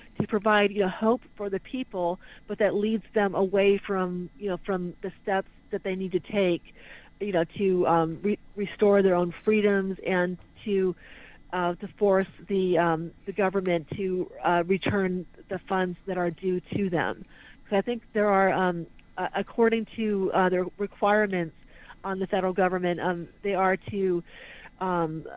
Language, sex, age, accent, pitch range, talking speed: English, female, 40-59, American, 175-205 Hz, 175 wpm